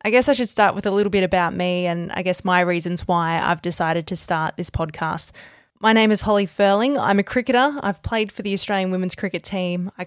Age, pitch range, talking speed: 20-39, 175-195 Hz, 240 wpm